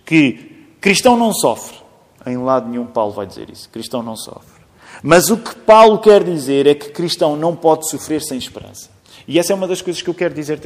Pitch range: 120-180 Hz